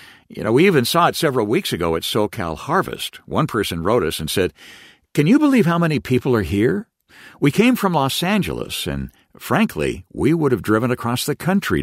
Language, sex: English, male